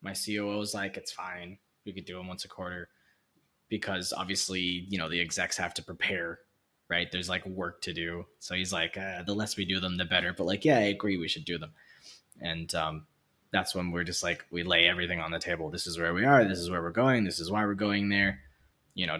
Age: 20-39